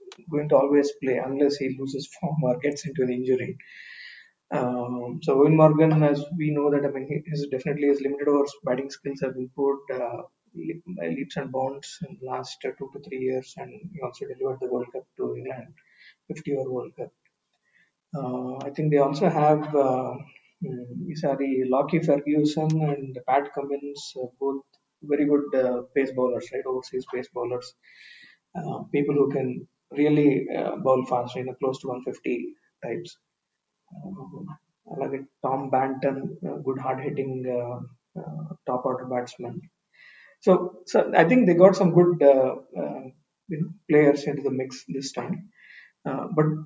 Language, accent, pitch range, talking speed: Telugu, native, 130-175 Hz, 175 wpm